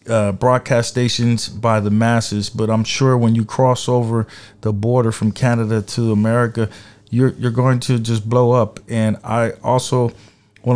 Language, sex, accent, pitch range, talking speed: English, male, American, 110-130 Hz, 165 wpm